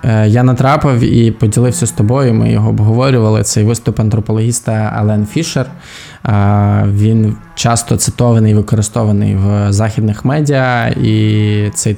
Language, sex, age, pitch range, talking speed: Ukrainian, male, 20-39, 110-130 Hz, 120 wpm